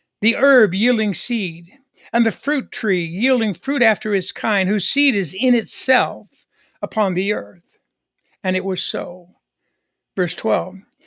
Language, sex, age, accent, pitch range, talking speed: English, male, 60-79, American, 195-255 Hz, 145 wpm